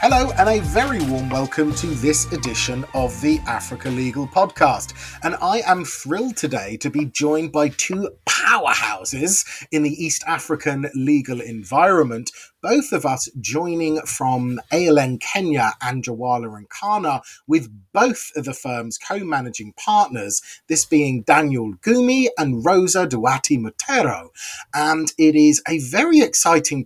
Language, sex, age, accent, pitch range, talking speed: English, male, 30-49, British, 135-185 Hz, 140 wpm